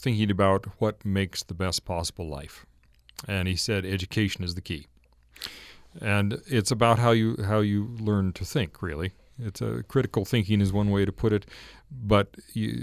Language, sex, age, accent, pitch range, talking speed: English, male, 40-59, American, 90-110 Hz, 180 wpm